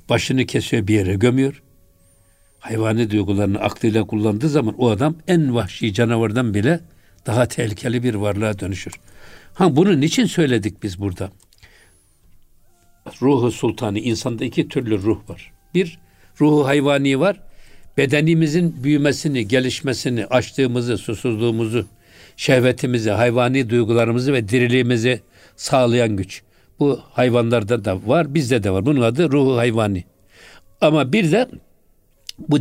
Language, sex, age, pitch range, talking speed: Turkish, male, 60-79, 105-140 Hz, 120 wpm